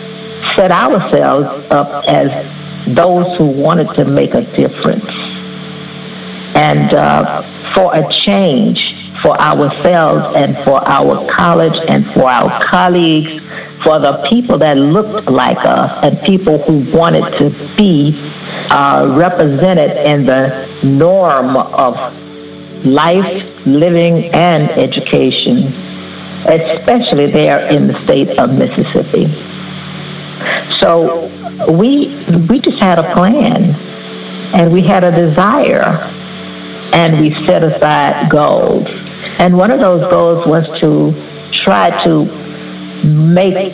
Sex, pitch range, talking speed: female, 145-180 Hz, 115 wpm